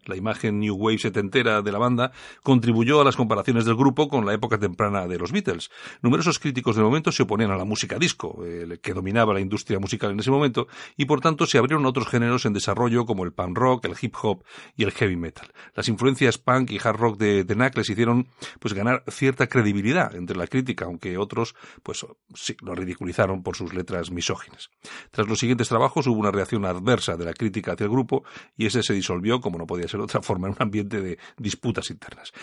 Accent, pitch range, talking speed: Spanish, 100-135 Hz, 220 wpm